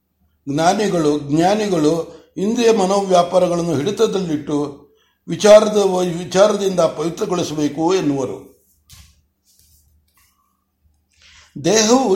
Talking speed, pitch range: 50 wpm, 155-205 Hz